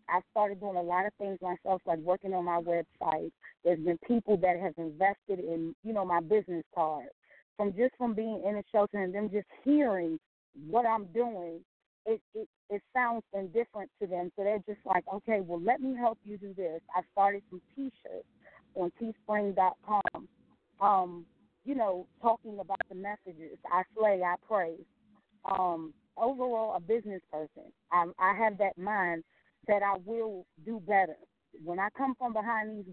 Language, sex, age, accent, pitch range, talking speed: English, female, 30-49, American, 180-215 Hz, 175 wpm